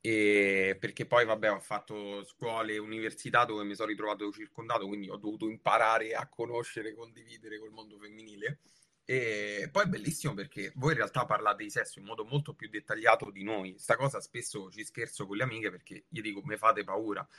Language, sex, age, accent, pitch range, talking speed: Italian, male, 20-39, native, 105-130 Hz, 195 wpm